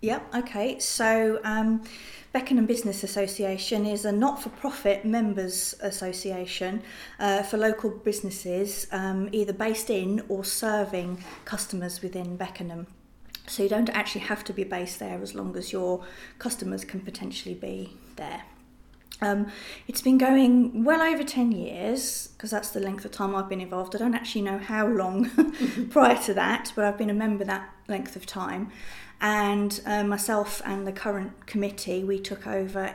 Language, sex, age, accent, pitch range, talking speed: English, female, 30-49, British, 185-215 Hz, 160 wpm